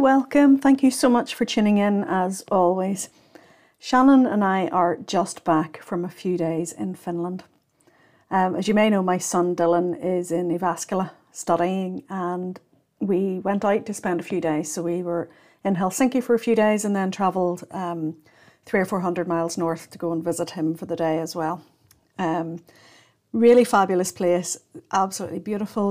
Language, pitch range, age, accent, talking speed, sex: English, 175-220 Hz, 50-69, British, 180 wpm, female